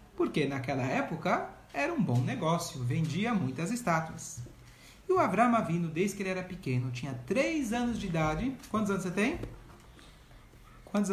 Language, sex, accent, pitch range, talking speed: Portuguese, male, Brazilian, 160-240 Hz, 155 wpm